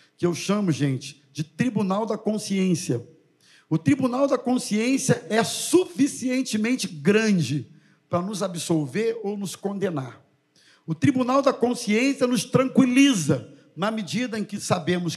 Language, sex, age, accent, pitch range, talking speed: Portuguese, male, 50-69, Brazilian, 165-240 Hz, 125 wpm